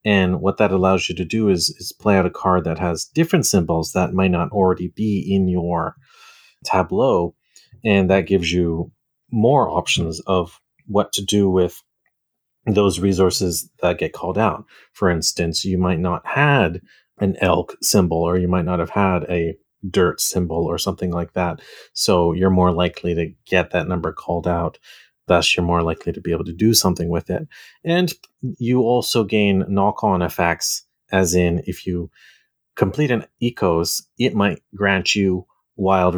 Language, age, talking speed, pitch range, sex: English, 30-49, 170 wpm, 90-100 Hz, male